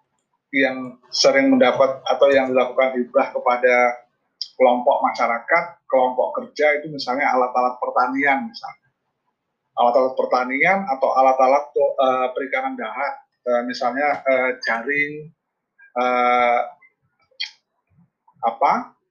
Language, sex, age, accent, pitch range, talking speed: Indonesian, male, 30-49, native, 130-195 Hz, 95 wpm